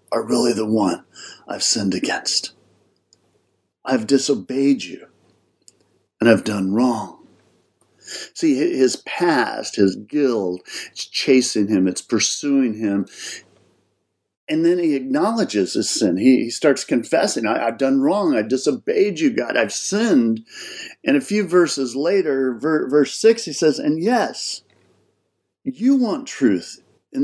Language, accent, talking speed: English, American, 130 wpm